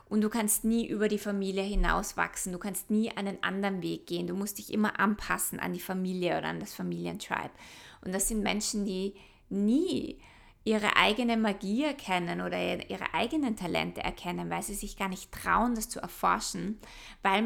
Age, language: 20-39, German